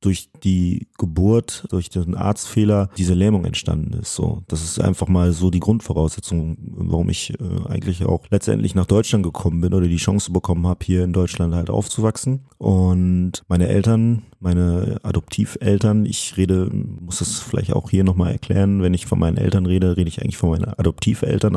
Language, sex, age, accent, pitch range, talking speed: German, male, 30-49, German, 85-105 Hz, 180 wpm